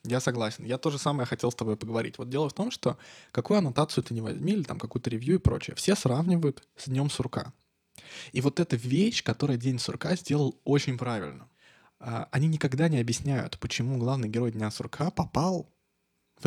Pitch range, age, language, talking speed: 120-155 Hz, 20-39, Russian, 190 wpm